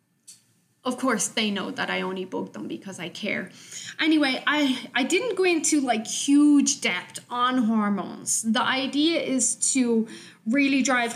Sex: female